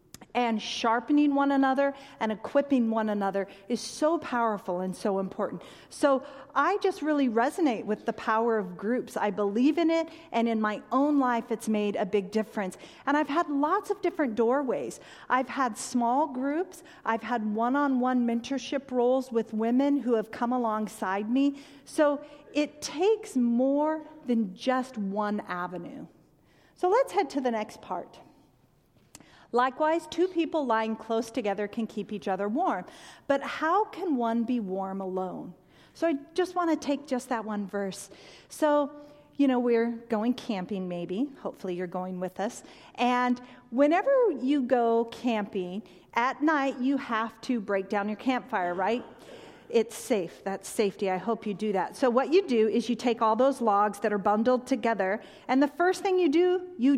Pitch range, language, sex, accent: 215-285 Hz, English, female, American